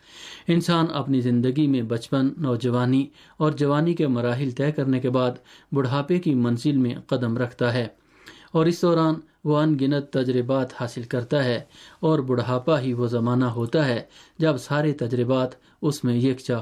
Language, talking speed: Urdu, 160 wpm